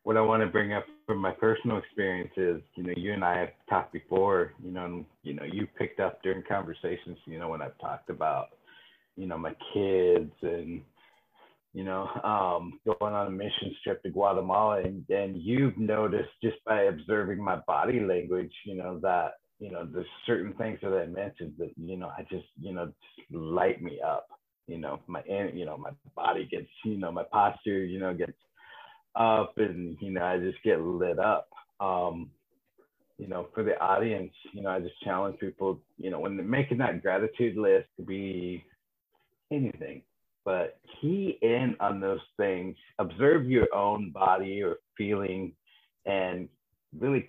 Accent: American